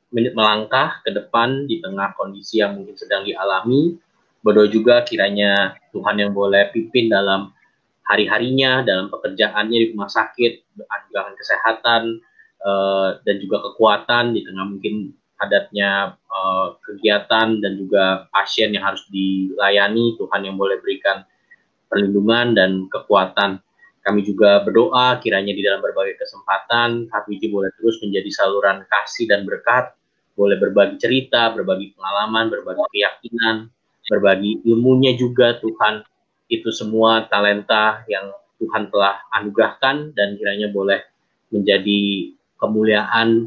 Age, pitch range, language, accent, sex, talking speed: 20-39, 100-115 Hz, Indonesian, native, male, 120 wpm